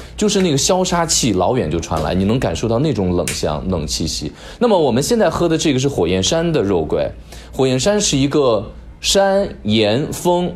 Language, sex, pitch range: Chinese, male, 105-150 Hz